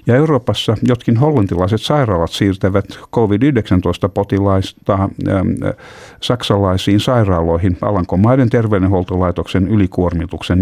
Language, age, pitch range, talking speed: Finnish, 60-79, 90-110 Hz, 75 wpm